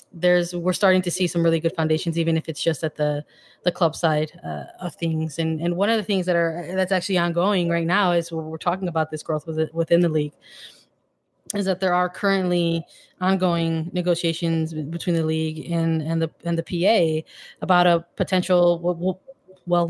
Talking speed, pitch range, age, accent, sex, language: 195 wpm, 165-185 Hz, 20-39, American, female, English